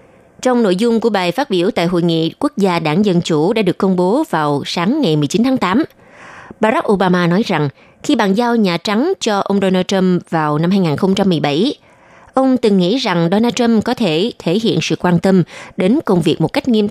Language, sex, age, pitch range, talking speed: Vietnamese, female, 20-39, 170-230 Hz, 215 wpm